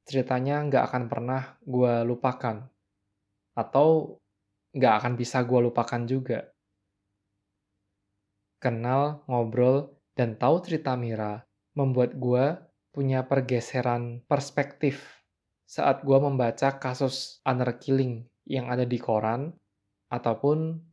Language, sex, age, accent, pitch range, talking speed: Indonesian, male, 20-39, native, 105-135 Hz, 95 wpm